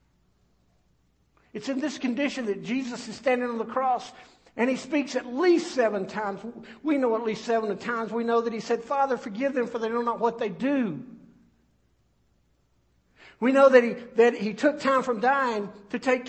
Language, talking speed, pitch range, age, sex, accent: English, 190 wpm, 170-250 Hz, 60-79, male, American